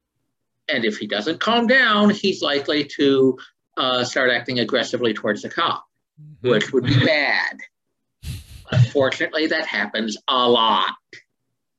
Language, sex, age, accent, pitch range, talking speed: English, male, 50-69, American, 115-150 Hz, 125 wpm